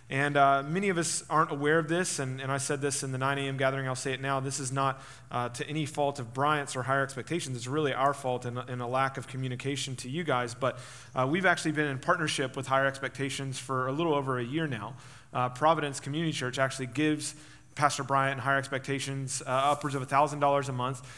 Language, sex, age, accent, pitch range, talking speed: English, male, 30-49, American, 130-150 Hz, 230 wpm